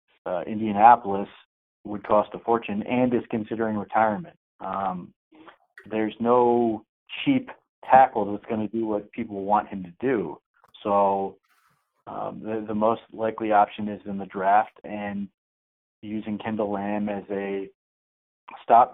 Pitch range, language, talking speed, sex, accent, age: 100-115 Hz, English, 135 wpm, male, American, 30-49